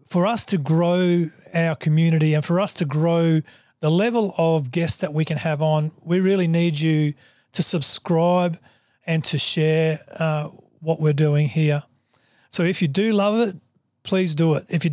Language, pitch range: English, 150-175 Hz